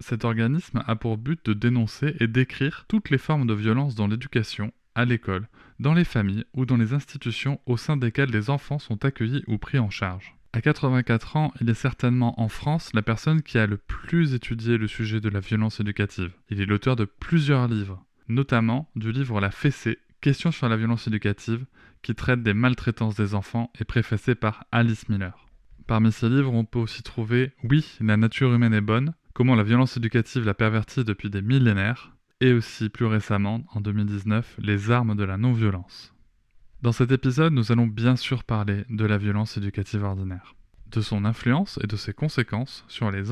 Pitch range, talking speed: 105-125 Hz, 200 wpm